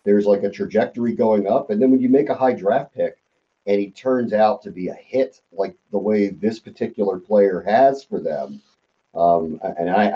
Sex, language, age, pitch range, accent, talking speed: male, English, 40-59, 100-125 Hz, American, 205 wpm